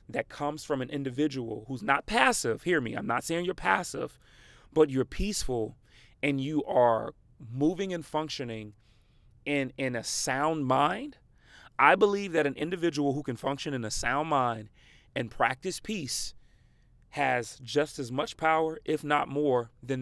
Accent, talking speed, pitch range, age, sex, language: American, 160 wpm, 120-150 Hz, 30-49, male, English